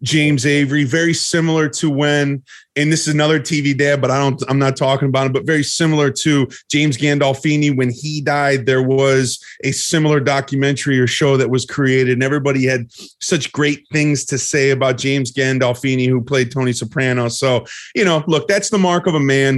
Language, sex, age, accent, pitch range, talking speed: English, male, 30-49, American, 125-150 Hz, 195 wpm